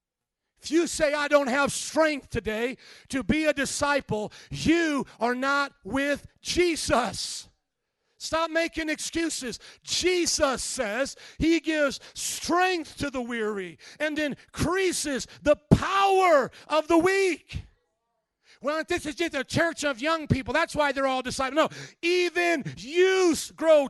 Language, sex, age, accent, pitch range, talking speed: English, male, 40-59, American, 290-345 Hz, 135 wpm